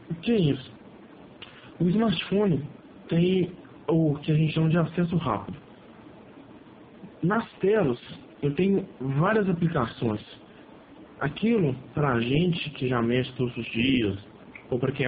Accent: Brazilian